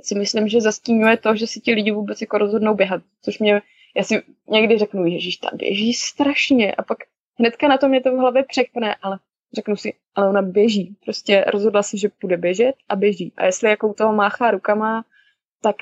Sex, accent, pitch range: female, native, 200-225 Hz